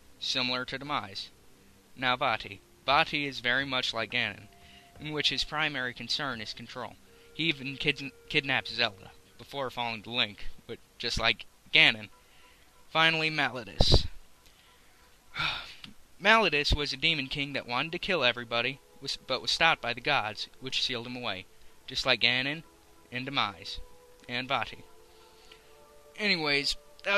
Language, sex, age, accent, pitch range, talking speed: English, male, 20-39, American, 120-150 Hz, 135 wpm